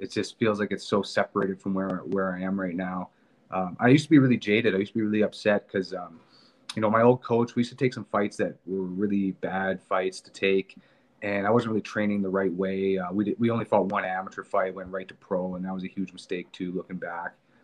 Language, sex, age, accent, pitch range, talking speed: English, male, 30-49, American, 95-110 Hz, 260 wpm